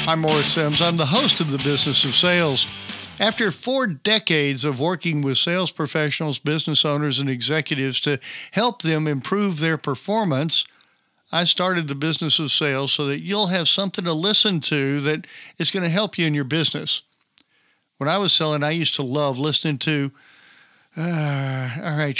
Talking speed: 175 wpm